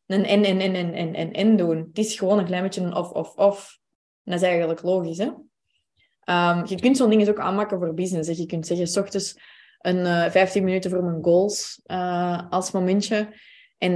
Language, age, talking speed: Dutch, 20-39, 205 wpm